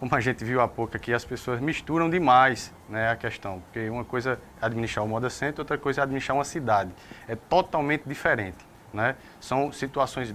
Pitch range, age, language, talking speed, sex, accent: 110-140 Hz, 20-39, Portuguese, 195 wpm, male, Brazilian